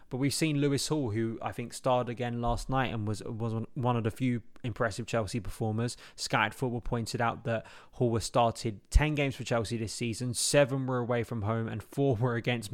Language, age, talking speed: English, 20-39, 210 wpm